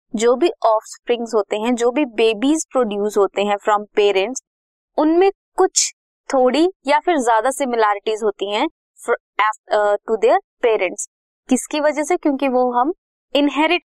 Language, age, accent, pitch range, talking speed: Hindi, 20-39, native, 220-300 Hz, 135 wpm